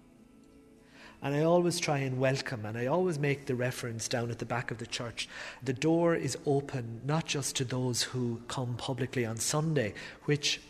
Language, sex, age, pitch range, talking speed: English, male, 30-49, 120-135 Hz, 185 wpm